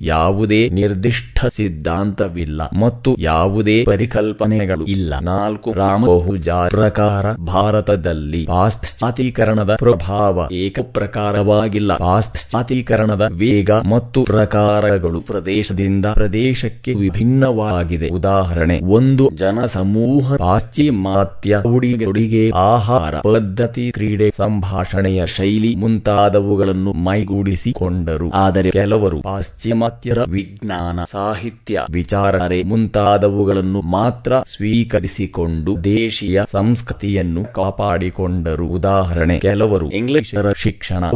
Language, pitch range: English, 95-110 Hz